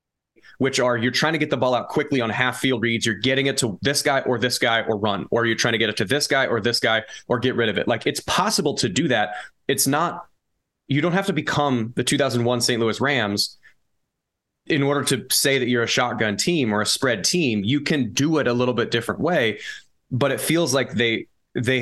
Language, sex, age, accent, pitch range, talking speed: English, male, 20-39, American, 115-135 Hz, 240 wpm